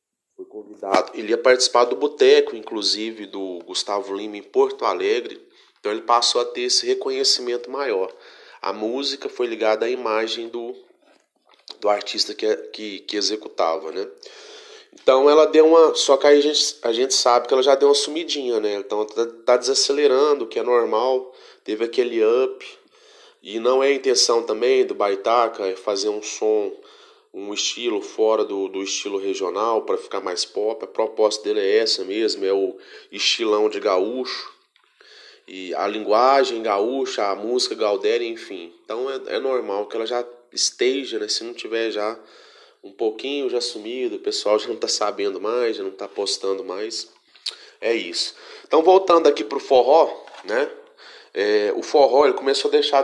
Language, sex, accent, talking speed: Portuguese, male, Brazilian, 170 wpm